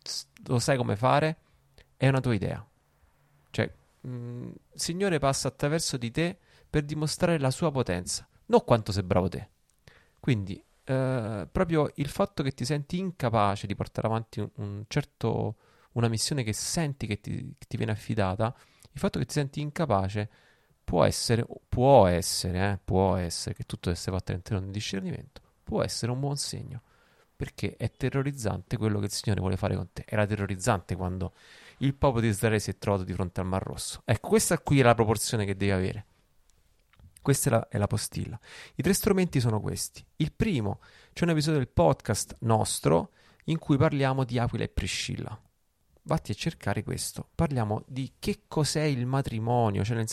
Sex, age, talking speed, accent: male, 30-49, 175 wpm, native